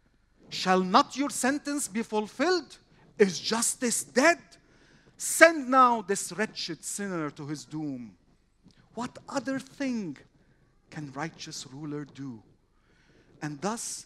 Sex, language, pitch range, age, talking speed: male, Arabic, 140-210 Hz, 50-69, 110 wpm